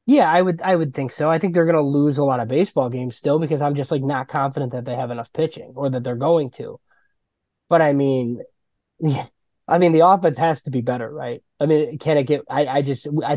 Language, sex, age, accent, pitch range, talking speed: English, male, 20-39, American, 125-150 Hz, 255 wpm